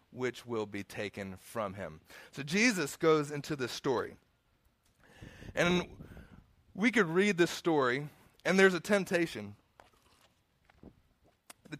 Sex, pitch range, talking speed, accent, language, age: male, 135-185 Hz, 115 wpm, American, English, 30-49